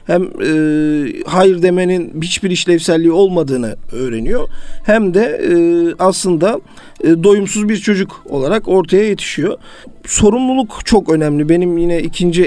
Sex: male